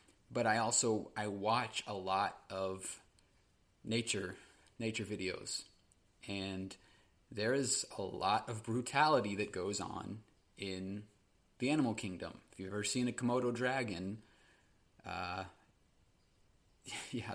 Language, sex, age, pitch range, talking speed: English, male, 30-49, 95-110 Hz, 120 wpm